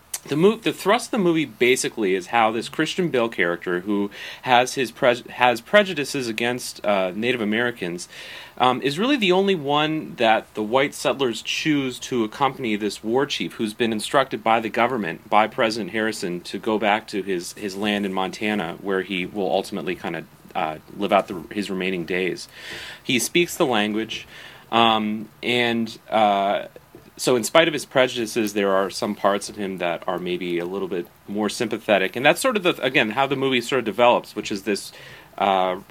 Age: 30-49